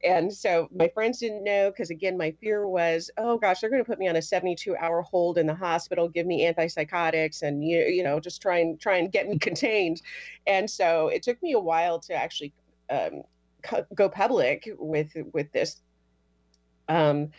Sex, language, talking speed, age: female, English, 195 wpm, 30-49